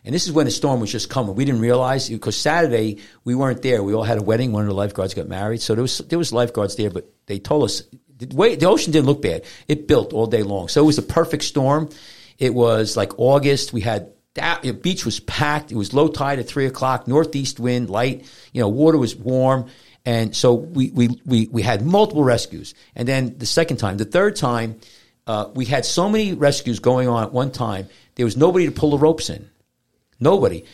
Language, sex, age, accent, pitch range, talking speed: English, male, 50-69, American, 110-150 Hz, 235 wpm